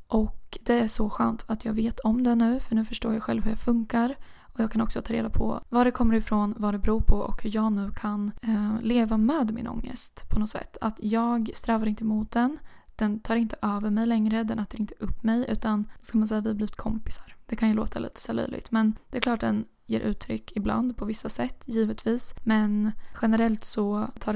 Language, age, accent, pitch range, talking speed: Swedish, 20-39, native, 215-230 Hz, 235 wpm